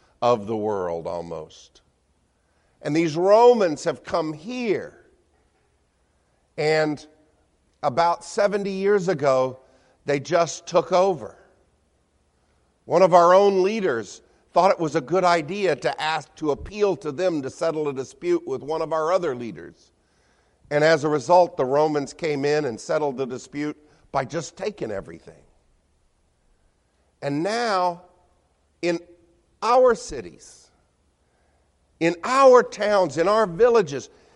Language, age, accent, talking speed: English, 50-69, American, 125 wpm